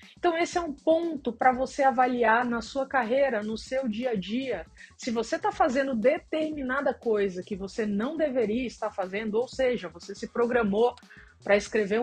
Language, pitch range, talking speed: Portuguese, 195-255 Hz, 175 wpm